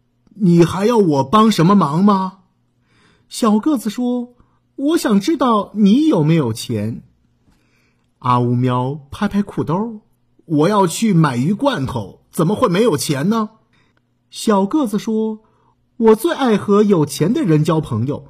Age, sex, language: 50-69, male, Chinese